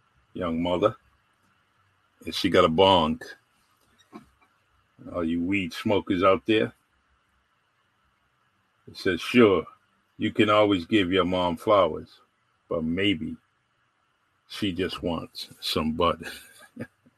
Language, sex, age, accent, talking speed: English, male, 50-69, American, 105 wpm